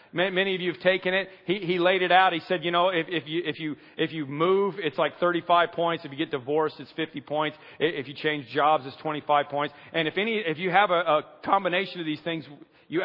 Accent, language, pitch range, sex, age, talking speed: American, English, 140-180 Hz, male, 40-59, 250 wpm